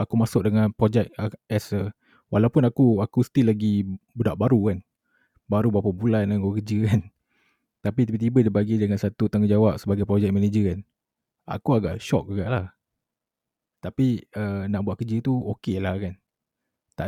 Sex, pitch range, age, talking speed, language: male, 100-115 Hz, 20-39, 160 wpm, Malay